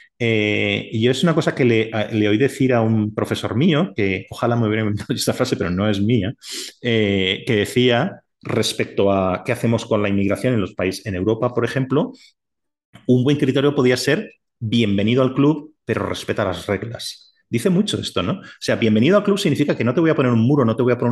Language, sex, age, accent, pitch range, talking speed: Spanish, male, 30-49, Spanish, 105-140 Hz, 225 wpm